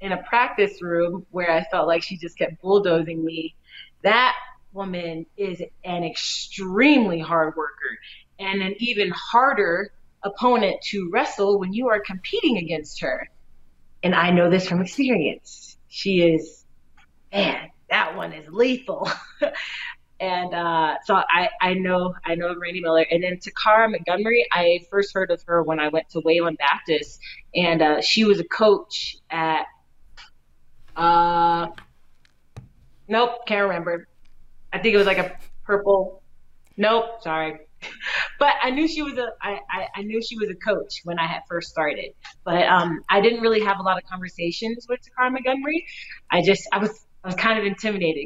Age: 30-49